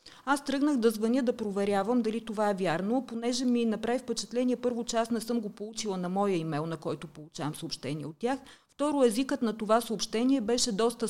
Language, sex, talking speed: Bulgarian, female, 195 wpm